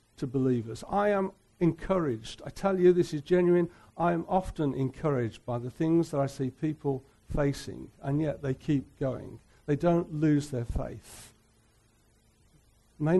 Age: 60-79